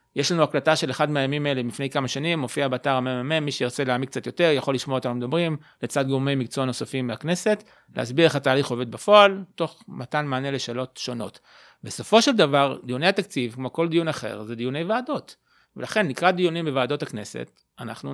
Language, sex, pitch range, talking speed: Hebrew, male, 130-170 Hz, 185 wpm